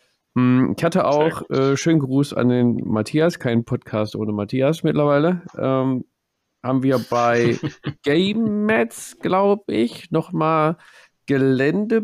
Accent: German